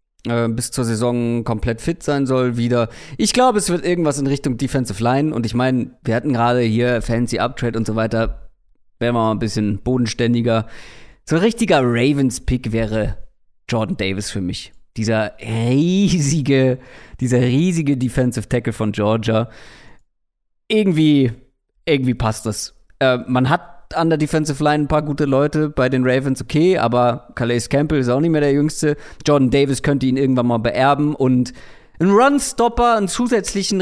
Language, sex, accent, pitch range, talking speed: German, male, German, 115-145 Hz, 160 wpm